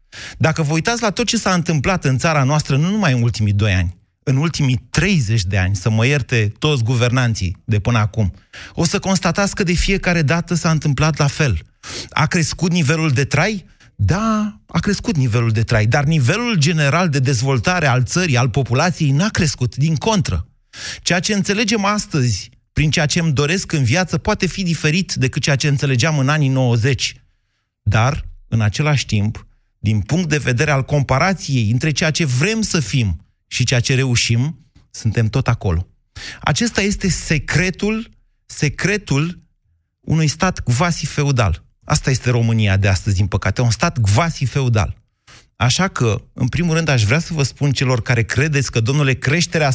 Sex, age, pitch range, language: male, 30-49, 115-160 Hz, Romanian